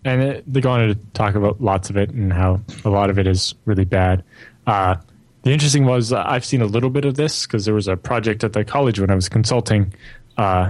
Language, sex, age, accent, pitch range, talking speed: English, male, 20-39, American, 105-125 Hz, 245 wpm